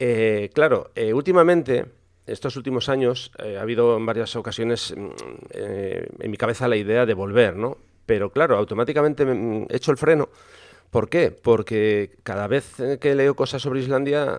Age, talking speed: 40-59, 165 wpm